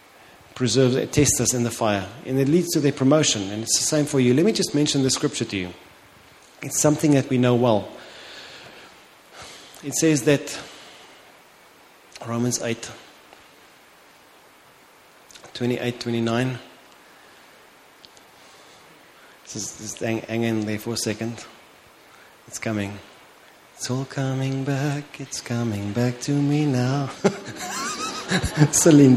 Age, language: 30-49, English